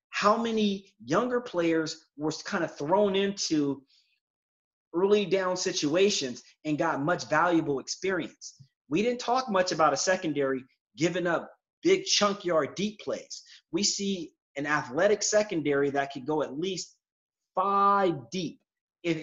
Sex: male